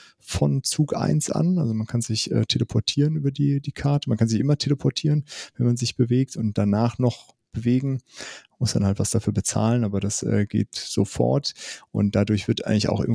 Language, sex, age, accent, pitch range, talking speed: German, male, 30-49, German, 100-120 Hz, 200 wpm